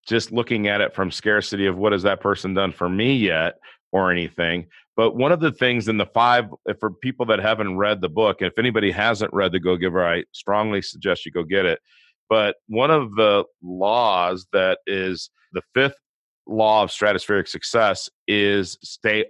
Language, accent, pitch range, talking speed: English, American, 100-125 Hz, 185 wpm